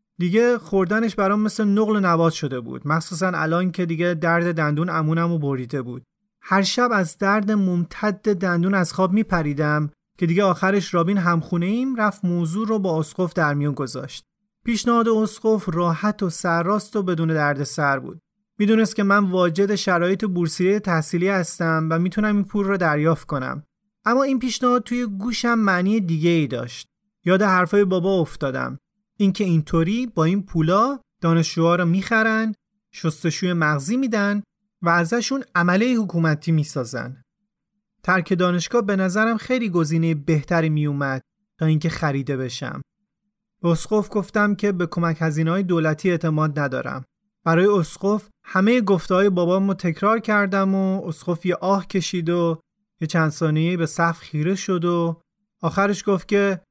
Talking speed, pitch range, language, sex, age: 150 wpm, 165-205 Hz, Persian, male, 30-49